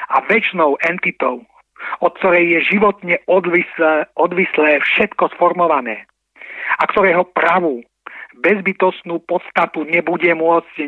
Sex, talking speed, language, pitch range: male, 95 wpm, Slovak, 150-185 Hz